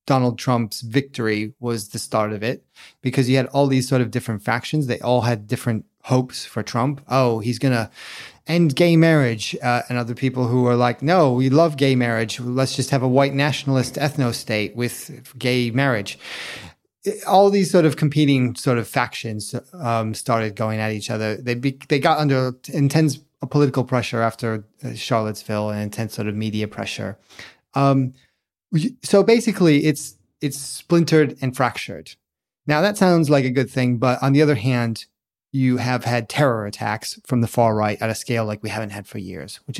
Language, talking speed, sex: English, 185 wpm, male